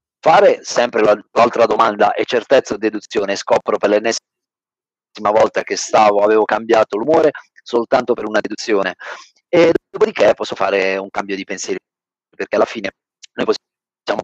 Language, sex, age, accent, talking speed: Italian, male, 40-59, native, 145 wpm